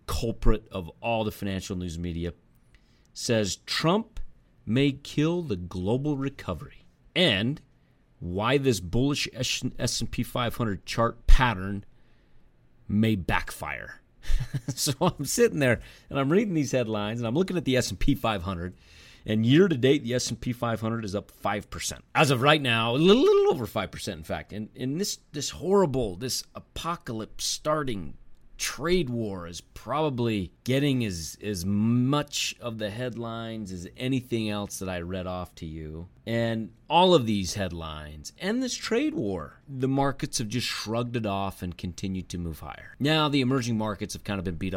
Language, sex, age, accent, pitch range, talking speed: English, male, 40-59, American, 95-135 Hz, 170 wpm